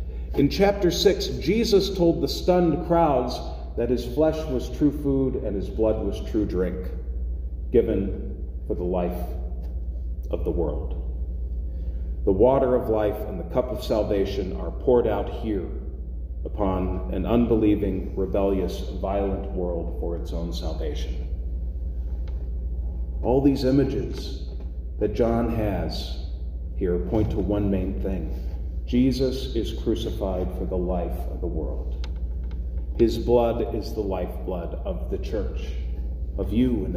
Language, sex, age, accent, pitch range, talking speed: English, male, 40-59, American, 65-110 Hz, 135 wpm